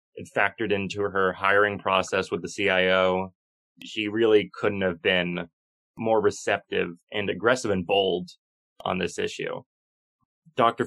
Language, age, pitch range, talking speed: English, 20-39, 100-125 Hz, 135 wpm